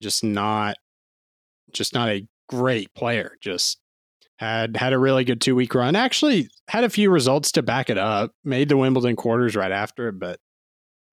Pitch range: 110-140 Hz